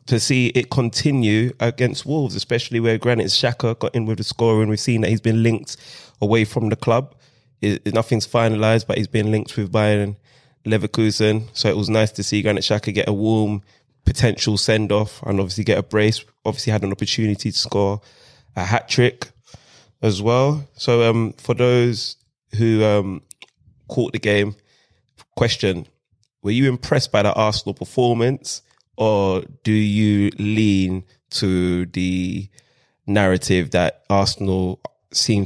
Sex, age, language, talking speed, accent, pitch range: male, 20-39, English, 155 wpm, British, 95-115 Hz